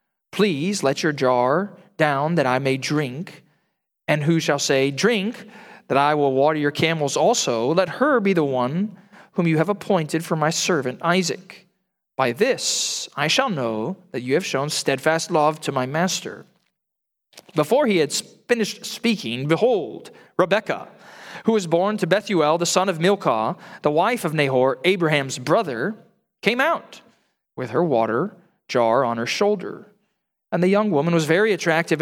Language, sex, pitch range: English, male, 145-210 Hz